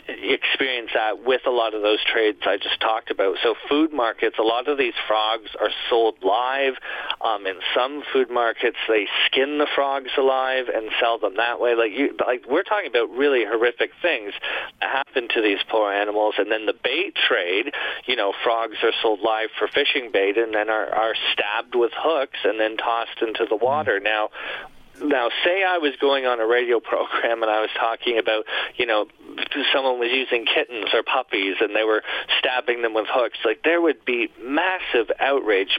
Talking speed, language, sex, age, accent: 195 wpm, English, male, 40-59, American